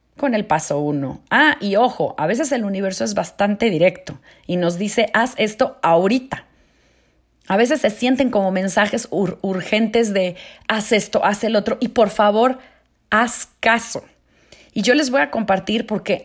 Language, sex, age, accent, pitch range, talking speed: Spanish, female, 40-59, Mexican, 190-270 Hz, 170 wpm